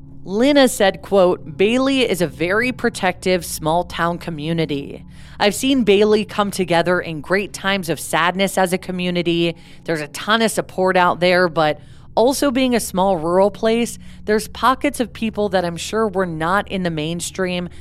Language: English